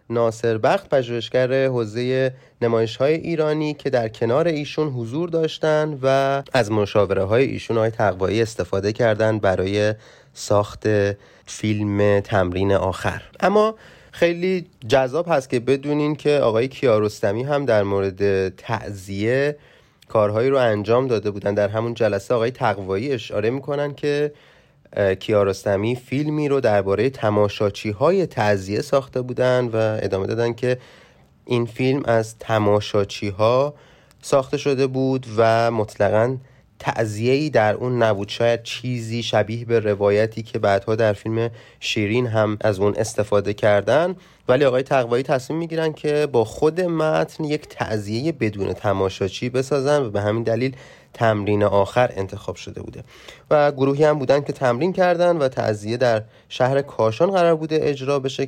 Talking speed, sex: 140 wpm, male